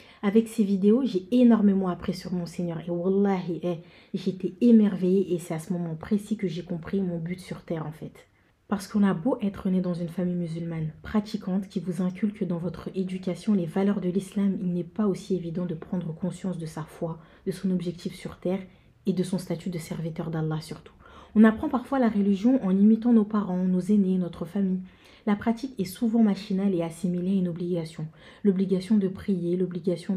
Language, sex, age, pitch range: French, female, 30-49, 175-205 Hz